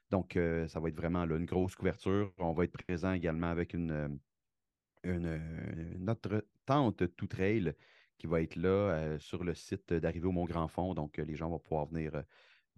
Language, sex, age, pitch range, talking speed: French, male, 30-49, 85-100 Hz, 190 wpm